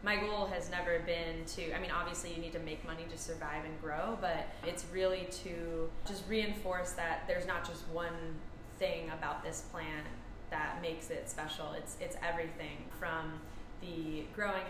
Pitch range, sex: 160-180 Hz, female